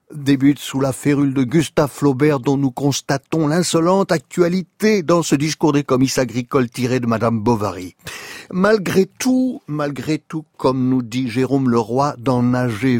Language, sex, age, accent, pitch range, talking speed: French, male, 60-79, French, 115-155 Hz, 150 wpm